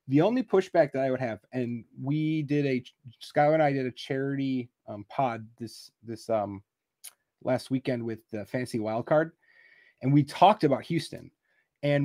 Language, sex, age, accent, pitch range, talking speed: English, male, 30-49, American, 115-145 Hz, 175 wpm